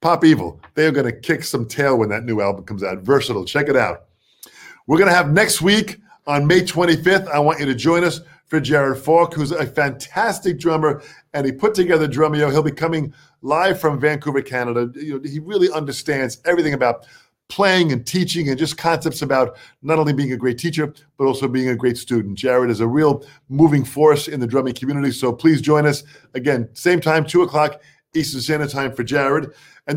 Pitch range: 135-165 Hz